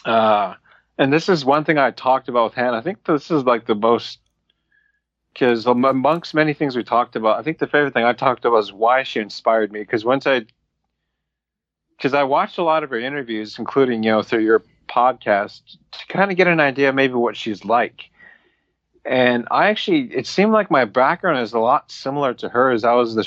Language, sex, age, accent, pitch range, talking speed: English, male, 30-49, American, 115-145 Hz, 210 wpm